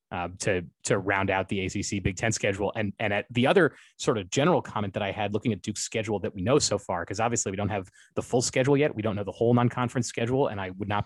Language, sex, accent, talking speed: English, male, American, 280 wpm